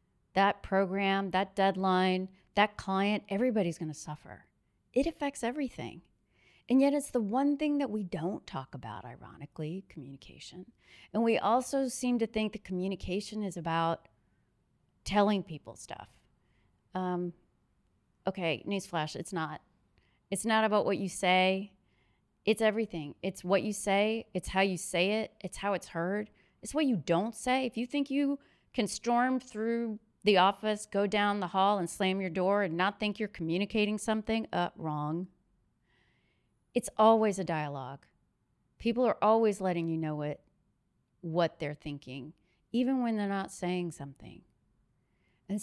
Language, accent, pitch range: English, American, 165-215 Hz